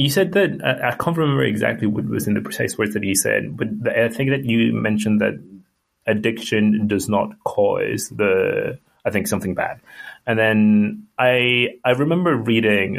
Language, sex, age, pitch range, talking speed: English, male, 30-49, 95-130 Hz, 180 wpm